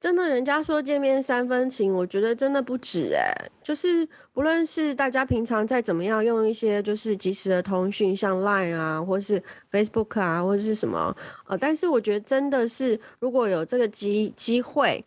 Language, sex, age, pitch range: Chinese, female, 30-49, 180-235 Hz